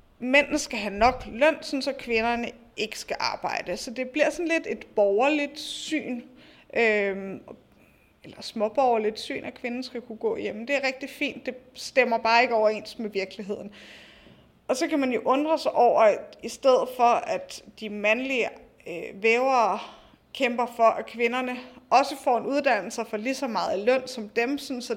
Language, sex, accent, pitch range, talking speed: Danish, female, native, 225-280 Hz, 175 wpm